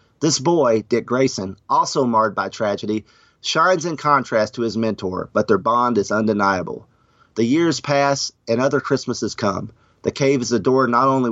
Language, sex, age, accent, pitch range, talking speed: English, male, 40-59, American, 110-135 Hz, 170 wpm